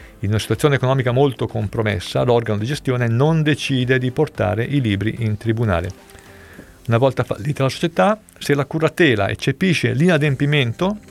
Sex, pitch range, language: male, 110-150 Hz, Italian